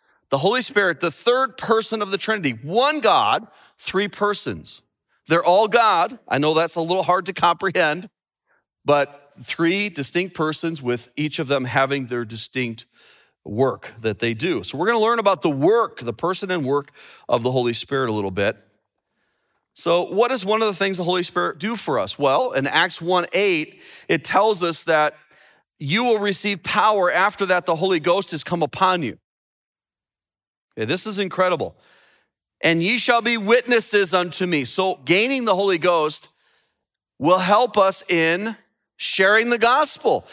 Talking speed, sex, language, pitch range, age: 170 wpm, male, English, 165-220 Hz, 40-59